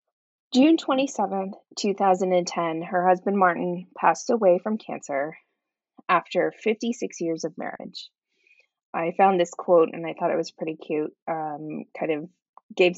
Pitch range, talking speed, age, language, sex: 170-225 Hz, 160 wpm, 20-39, English, female